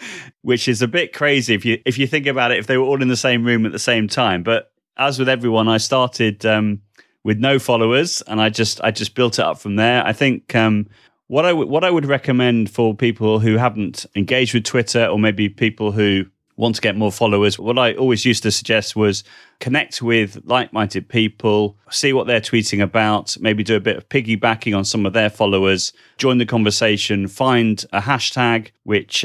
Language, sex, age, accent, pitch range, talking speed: English, male, 30-49, British, 100-120 Hz, 215 wpm